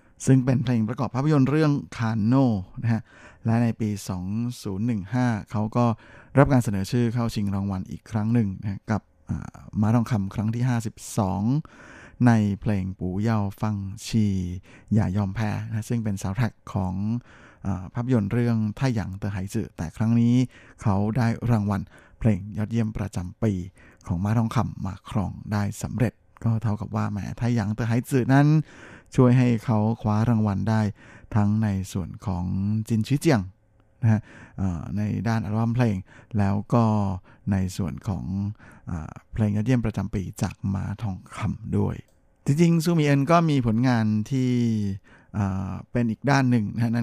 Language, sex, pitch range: Thai, male, 100-120 Hz